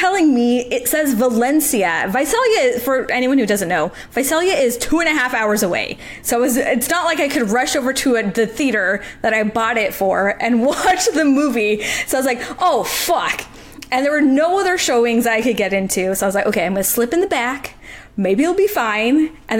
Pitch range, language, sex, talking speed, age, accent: 215-305 Hz, English, female, 225 wpm, 20-39, American